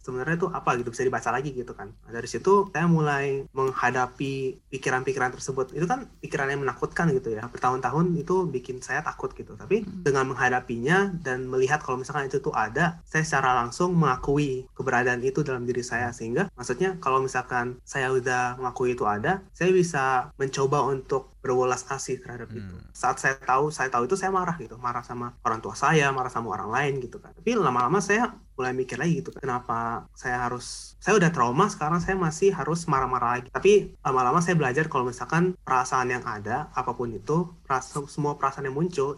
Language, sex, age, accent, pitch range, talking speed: Indonesian, male, 20-39, native, 125-155 Hz, 180 wpm